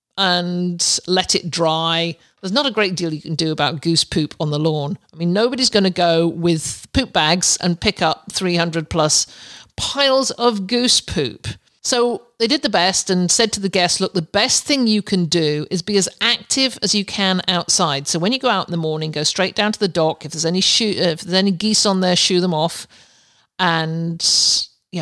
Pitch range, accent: 170-210 Hz, British